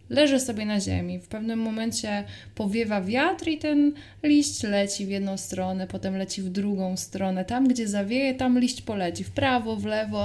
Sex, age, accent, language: female, 20-39, native, Polish